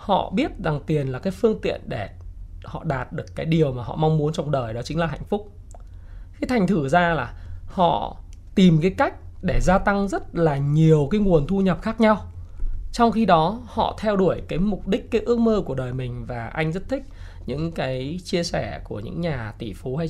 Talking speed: 225 wpm